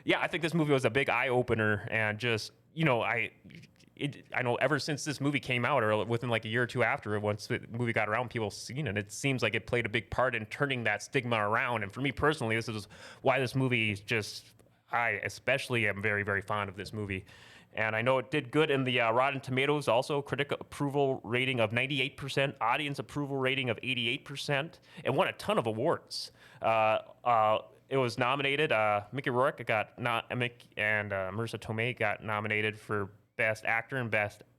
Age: 20-39